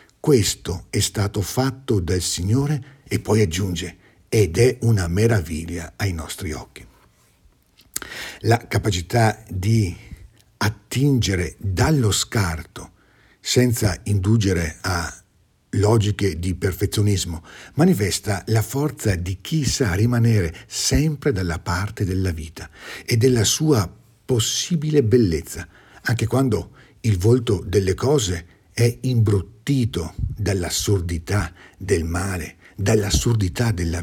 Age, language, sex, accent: 50-69, Italian, male, native